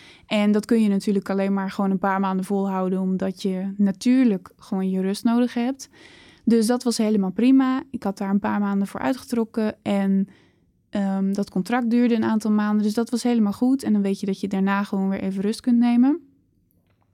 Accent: Dutch